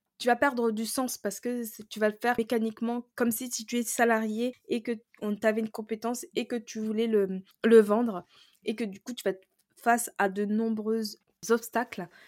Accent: French